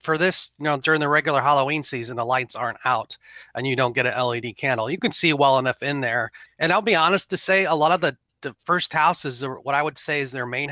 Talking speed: 270 wpm